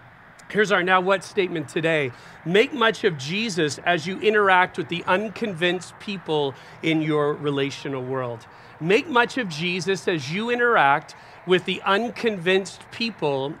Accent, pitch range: American, 140-205 Hz